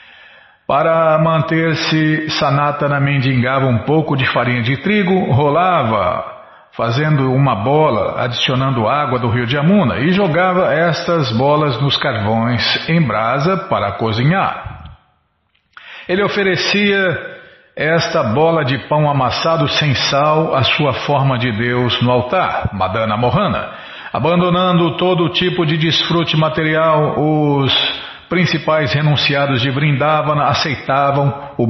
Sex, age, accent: male, 50-69, Brazilian